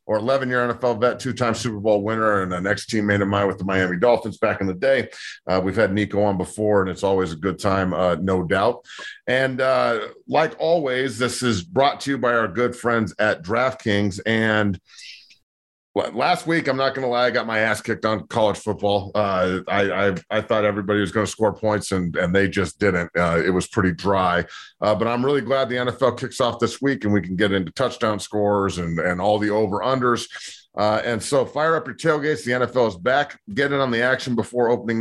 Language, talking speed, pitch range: English, 225 wpm, 105-130 Hz